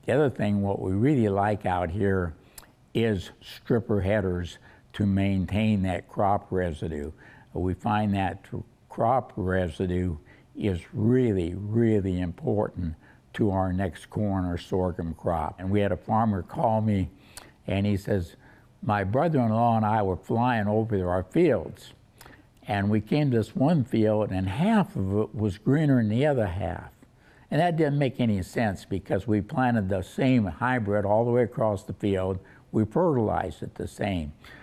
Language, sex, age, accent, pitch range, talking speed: English, male, 60-79, American, 95-120 Hz, 160 wpm